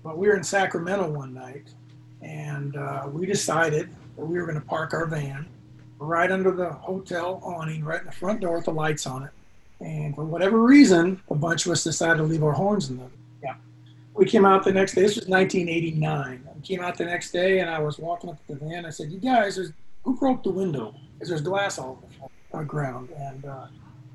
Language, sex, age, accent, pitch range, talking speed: English, male, 40-59, American, 145-185 Hz, 220 wpm